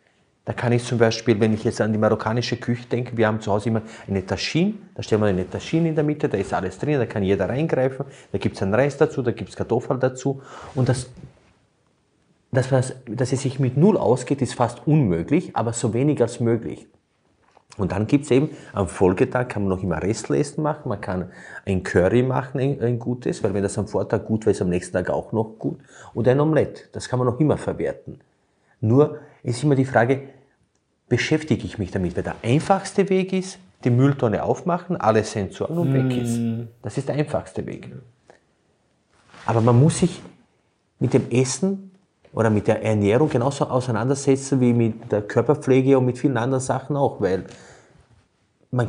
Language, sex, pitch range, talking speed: German, male, 110-140 Hz, 200 wpm